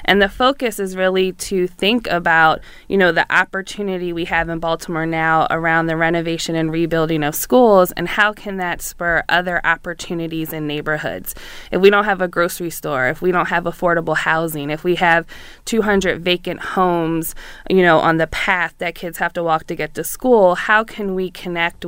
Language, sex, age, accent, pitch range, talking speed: English, female, 20-39, American, 165-185 Hz, 195 wpm